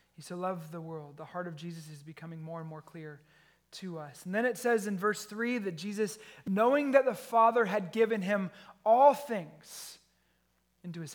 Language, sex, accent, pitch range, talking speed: English, male, American, 160-205 Hz, 200 wpm